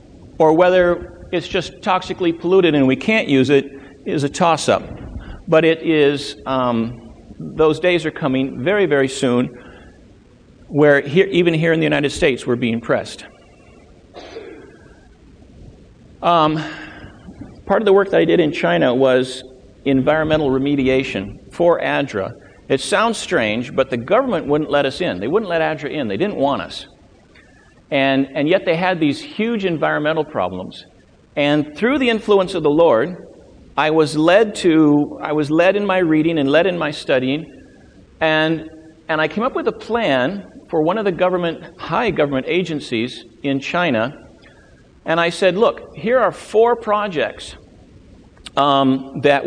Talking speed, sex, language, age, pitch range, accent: 160 wpm, male, English, 50-69, 135-180 Hz, American